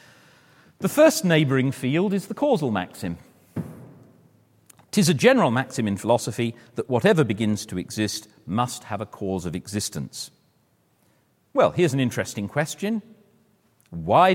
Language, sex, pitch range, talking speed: English, male, 105-155 Hz, 130 wpm